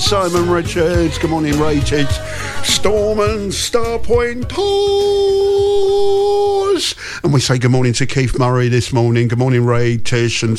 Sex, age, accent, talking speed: male, 50-69, British, 140 wpm